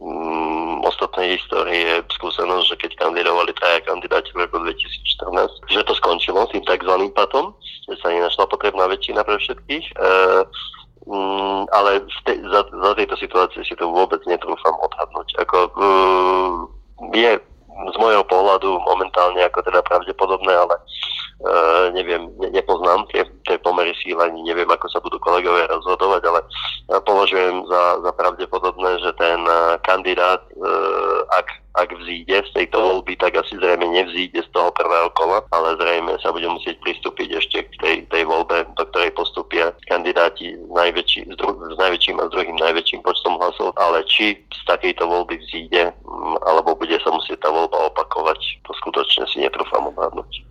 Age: 30-49